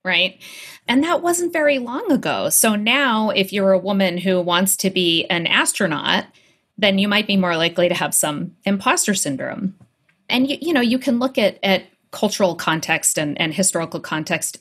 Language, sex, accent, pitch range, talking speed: English, female, American, 175-215 Hz, 185 wpm